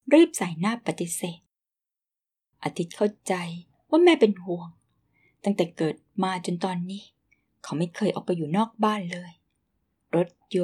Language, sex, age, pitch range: Thai, female, 20-39, 170-215 Hz